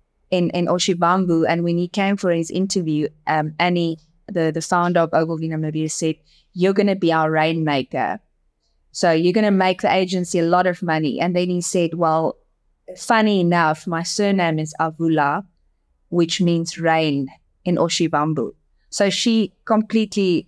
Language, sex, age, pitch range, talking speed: English, female, 20-39, 165-195 Hz, 160 wpm